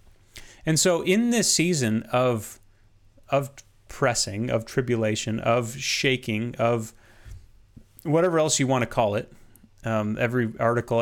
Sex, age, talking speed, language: male, 30-49, 125 wpm, English